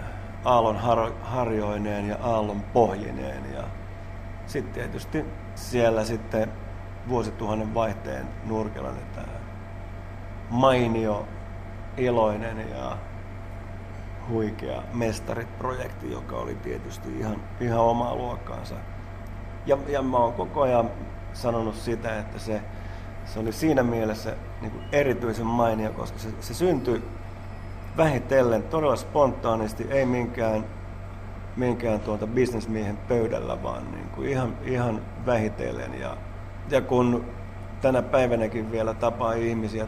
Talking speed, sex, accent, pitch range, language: 105 wpm, male, native, 95-115 Hz, Finnish